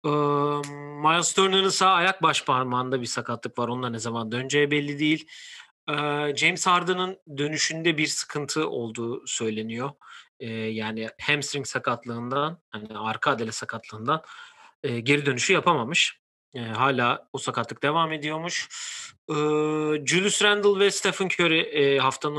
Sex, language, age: male, Turkish, 40-59